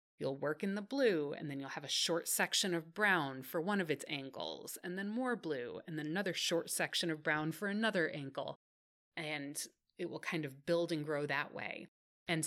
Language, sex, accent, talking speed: English, female, American, 210 wpm